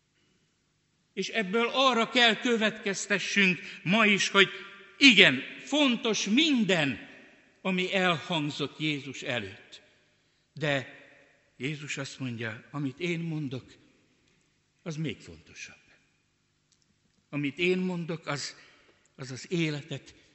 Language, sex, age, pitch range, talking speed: Hungarian, male, 60-79, 130-195 Hz, 95 wpm